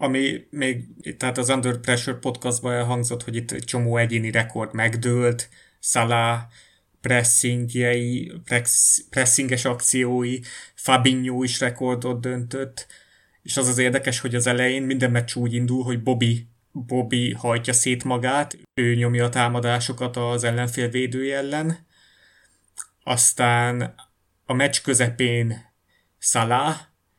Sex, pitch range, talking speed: male, 115-125 Hz, 115 wpm